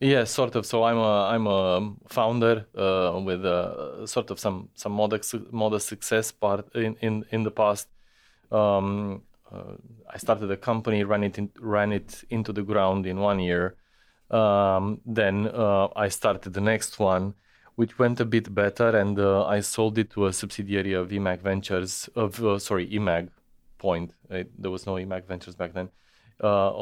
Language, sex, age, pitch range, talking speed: Croatian, male, 20-39, 95-110 Hz, 180 wpm